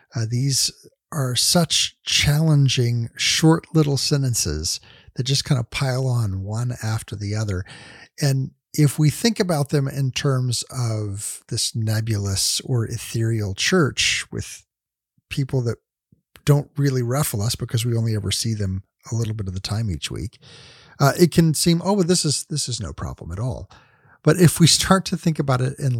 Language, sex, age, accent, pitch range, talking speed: English, male, 50-69, American, 115-150 Hz, 170 wpm